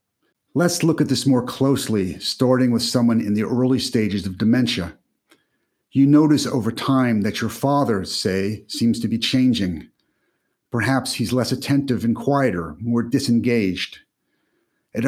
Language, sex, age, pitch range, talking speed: English, male, 50-69, 110-130 Hz, 145 wpm